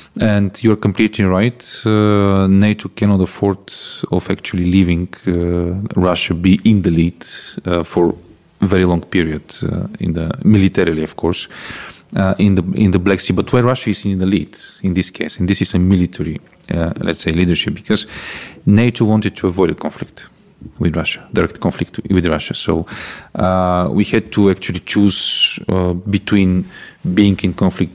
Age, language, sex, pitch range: 40-59, English, male, 90-100 Hz